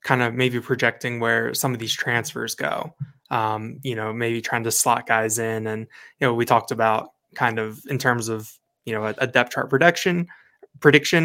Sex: male